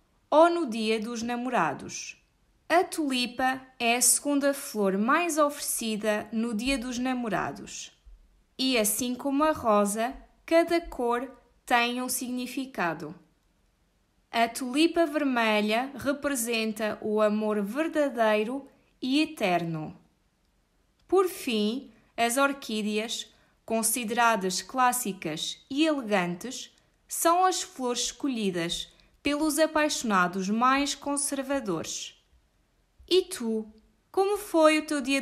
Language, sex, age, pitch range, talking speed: Portuguese, female, 20-39, 215-295 Hz, 100 wpm